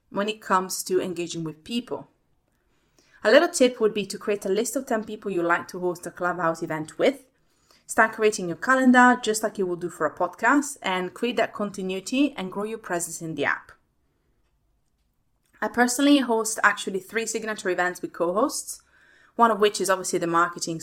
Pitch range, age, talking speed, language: 180-225 Hz, 20-39, 190 wpm, English